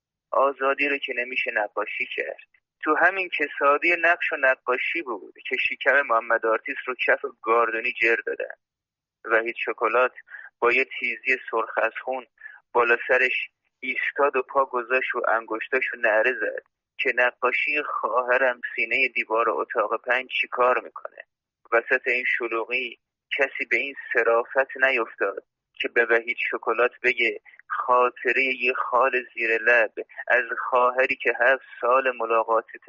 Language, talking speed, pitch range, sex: Persian, 135 wpm, 120-180 Hz, male